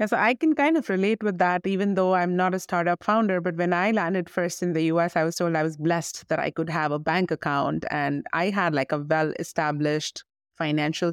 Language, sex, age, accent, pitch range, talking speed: English, female, 30-49, Indian, 155-190 Hz, 230 wpm